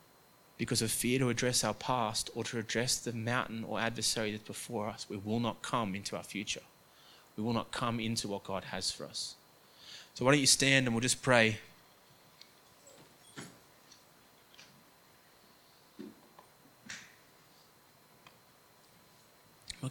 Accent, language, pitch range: Australian, English, 115-140 Hz